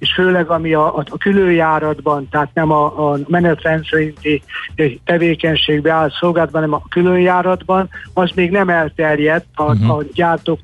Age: 60-79